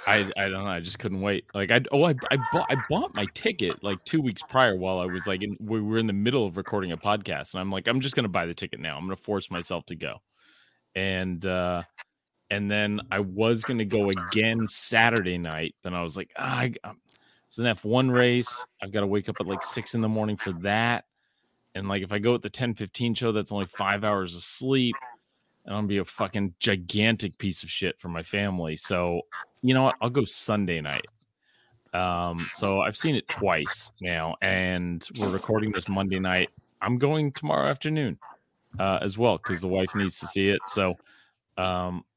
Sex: male